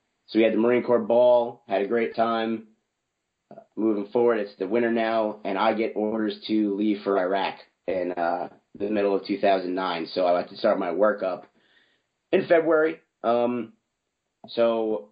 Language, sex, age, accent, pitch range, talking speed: English, male, 30-49, American, 100-115 Hz, 175 wpm